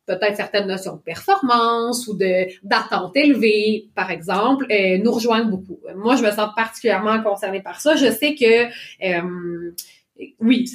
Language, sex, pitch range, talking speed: French, female, 195-245 Hz, 155 wpm